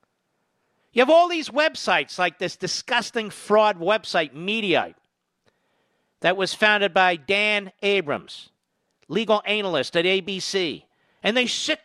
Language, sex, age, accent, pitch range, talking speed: English, male, 50-69, American, 195-280 Hz, 120 wpm